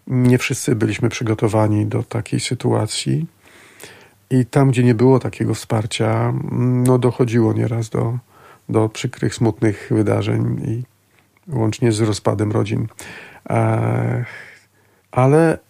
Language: Polish